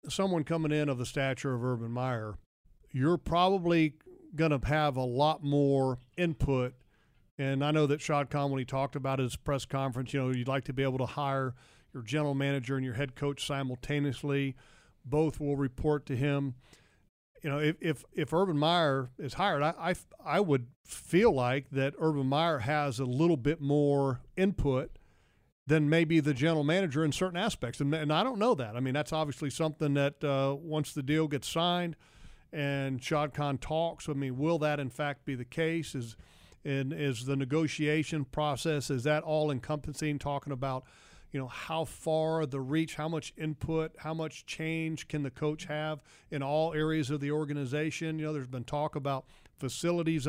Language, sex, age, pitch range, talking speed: English, male, 40-59, 135-155 Hz, 185 wpm